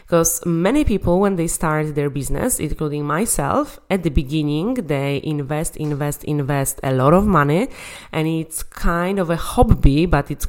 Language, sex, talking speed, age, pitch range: English, female, 165 wpm, 20-39, 145-185 Hz